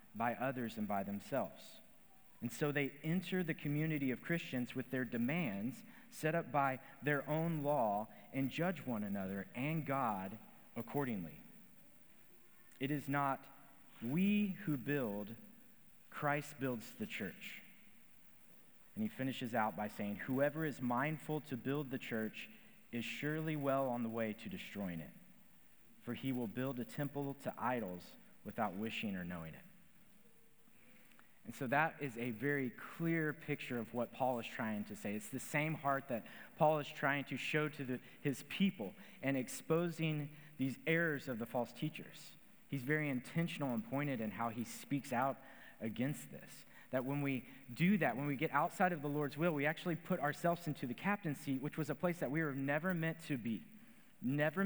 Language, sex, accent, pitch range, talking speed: English, male, American, 125-165 Hz, 170 wpm